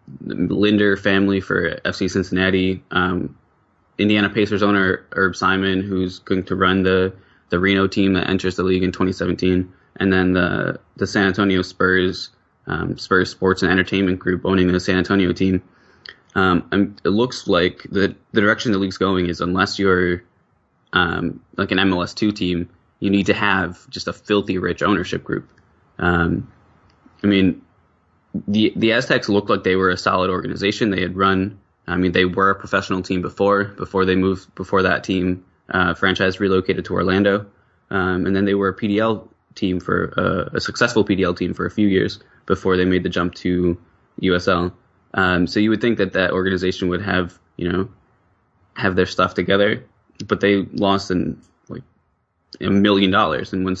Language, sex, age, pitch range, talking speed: English, male, 20-39, 90-100 Hz, 175 wpm